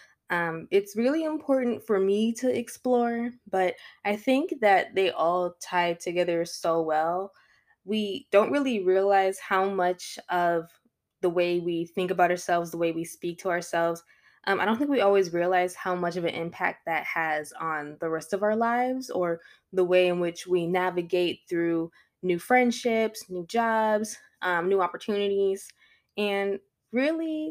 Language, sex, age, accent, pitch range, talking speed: English, female, 10-29, American, 175-220 Hz, 160 wpm